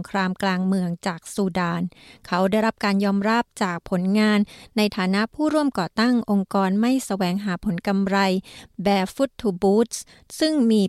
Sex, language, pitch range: female, Thai, 195-240 Hz